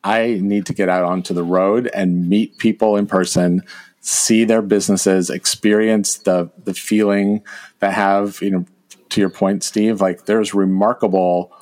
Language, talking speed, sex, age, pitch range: English, 160 wpm, male, 40-59, 90-105 Hz